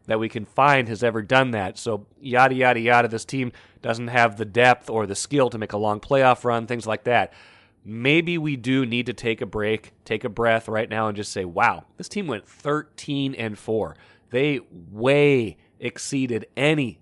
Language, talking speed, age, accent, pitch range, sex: English, 200 wpm, 30-49, American, 110-135 Hz, male